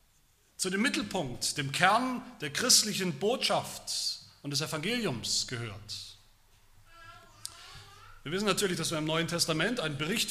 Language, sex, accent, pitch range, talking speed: German, male, German, 125-185 Hz, 130 wpm